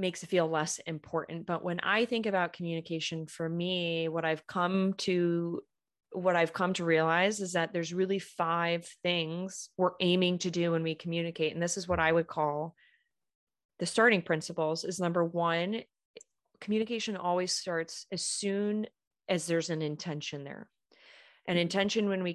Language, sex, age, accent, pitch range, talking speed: English, female, 30-49, American, 165-190 Hz, 165 wpm